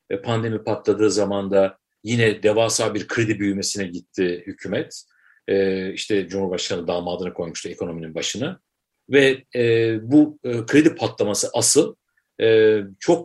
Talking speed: 105 wpm